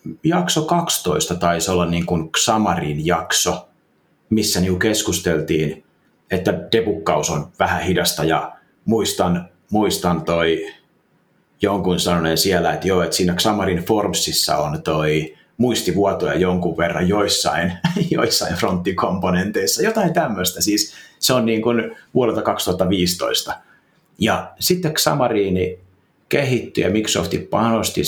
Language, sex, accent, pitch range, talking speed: Finnish, male, native, 85-115 Hz, 115 wpm